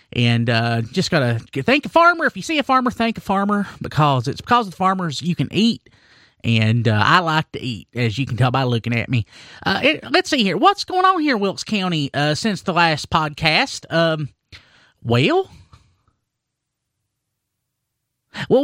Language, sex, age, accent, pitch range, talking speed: English, male, 30-49, American, 125-215 Hz, 185 wpm